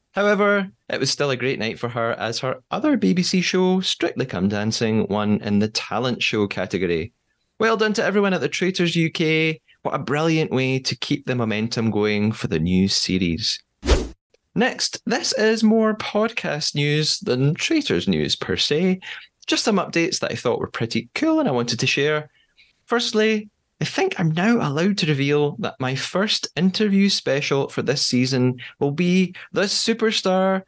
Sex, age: male, 20-39